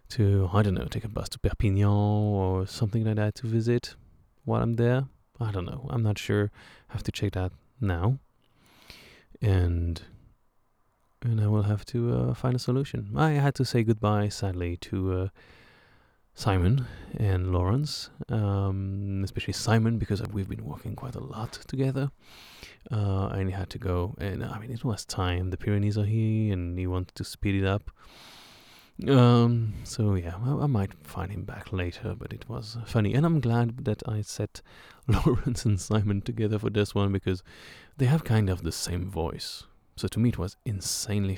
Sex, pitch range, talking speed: male, 95-120 Hz, 185 wpm